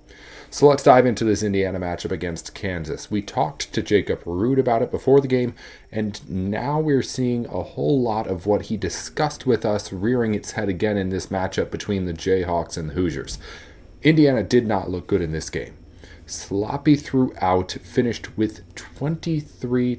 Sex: male